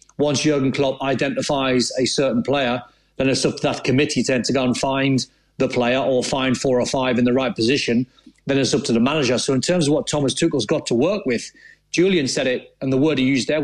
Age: 40-59